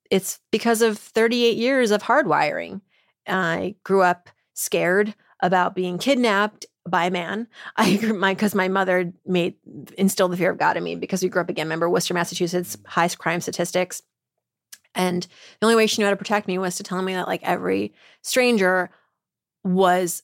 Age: 30-49